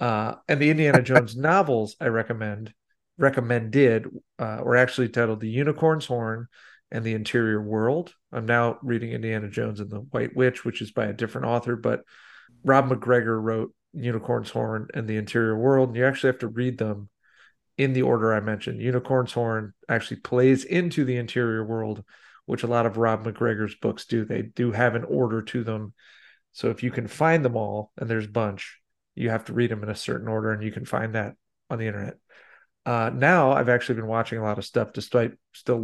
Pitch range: 110-125 Hz